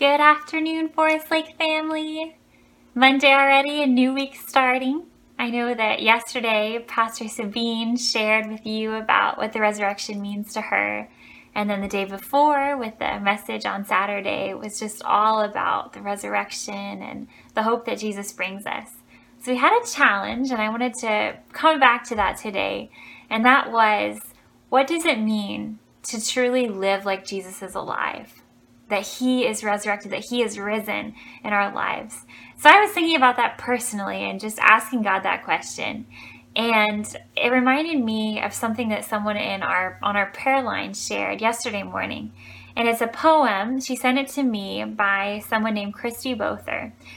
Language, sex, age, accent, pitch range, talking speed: English, female, 10-29, American, 205-255 Hz, 170 wpm